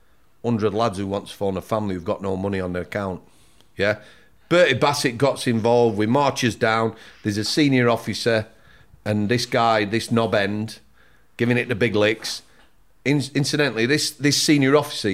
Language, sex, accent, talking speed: English, male, British, 175 wpm